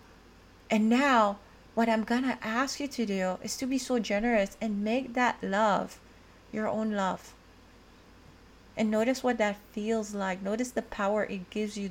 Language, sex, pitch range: English, female, 205-240 Hz